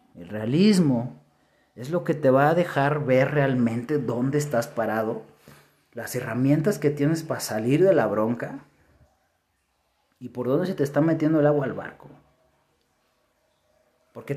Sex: male